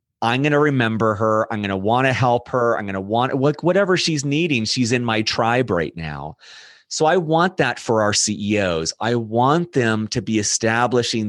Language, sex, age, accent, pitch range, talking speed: English, male, 30-49, American, 105-130 Hz, 200 wpm